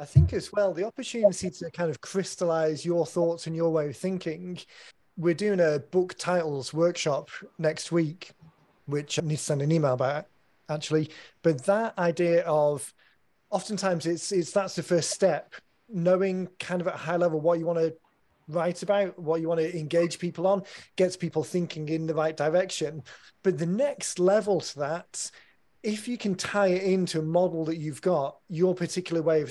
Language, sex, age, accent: English, male, 30-49, British